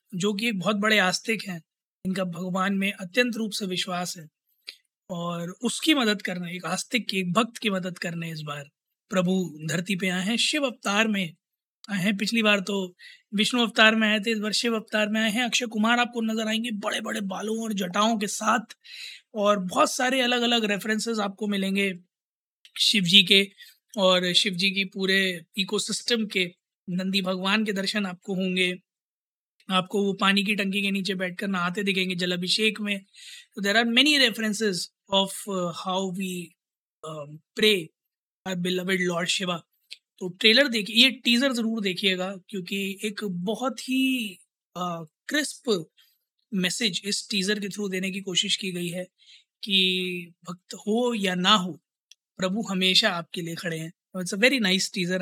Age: 20-39